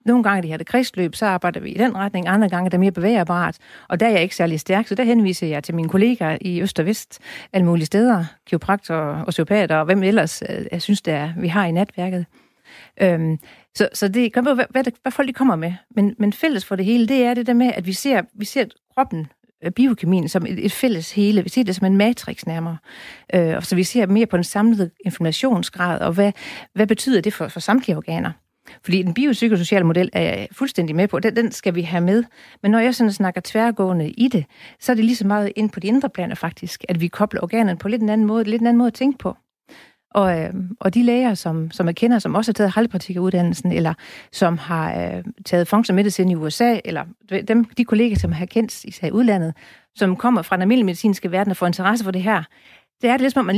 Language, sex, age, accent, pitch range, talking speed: Danish, female, 40-59, native, 180-230 Hz, 235 wpm